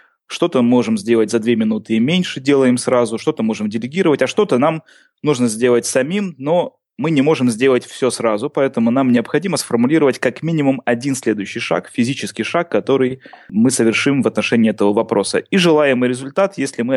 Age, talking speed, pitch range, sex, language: 20-39, 175 wpm, 110-135 Hz, male, Russian